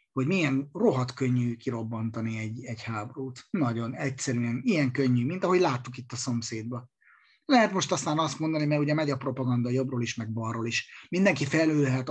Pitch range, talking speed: 125-155 Hz, 175 wpm